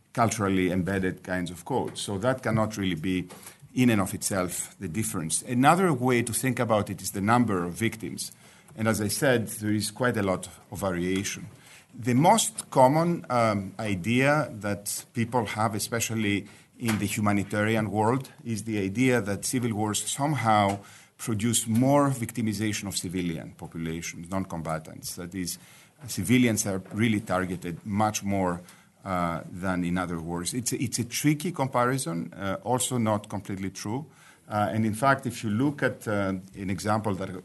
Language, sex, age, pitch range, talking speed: English, male, 50-69, 95-115 Hz, 160 wpm